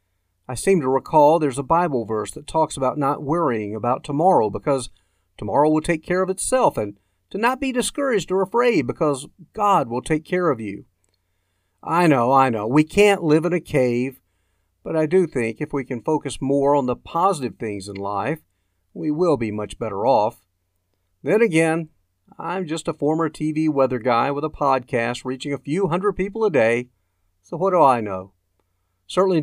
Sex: male